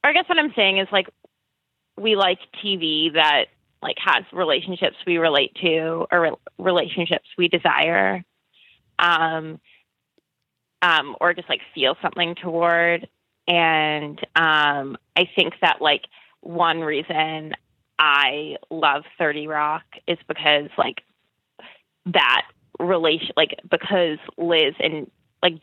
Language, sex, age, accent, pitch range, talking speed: English, female, 20-39, American, 155-185 Hz, 120 wpm